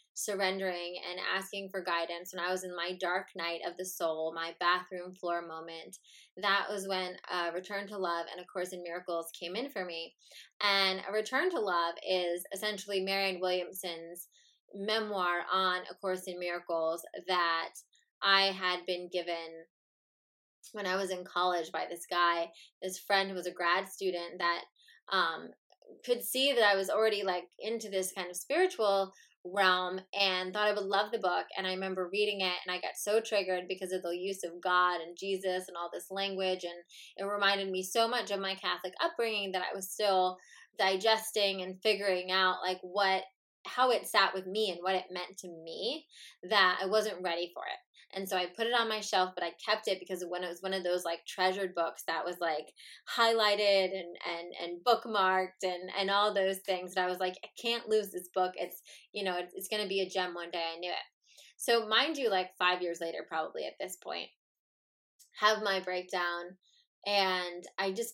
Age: 20-39